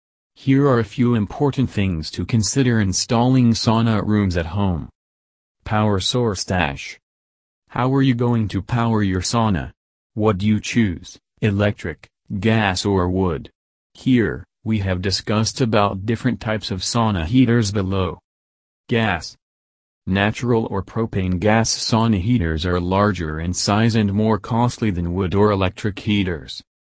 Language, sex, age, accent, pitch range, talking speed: English, male, 40-59, American, 90-115 Hz, 140 wpm